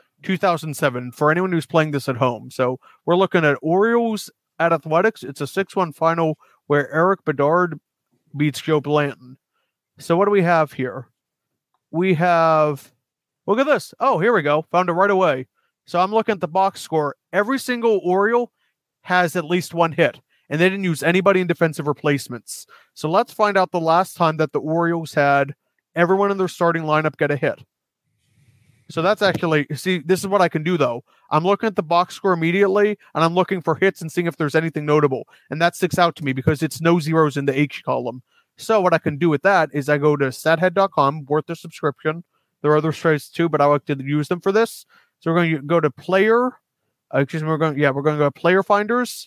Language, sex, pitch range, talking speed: English, male, 145-185 Hz, 215 wpm